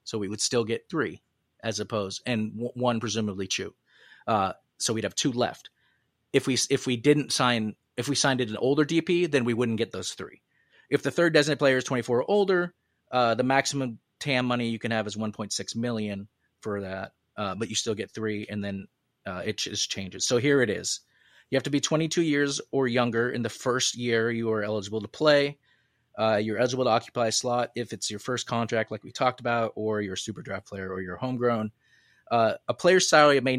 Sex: male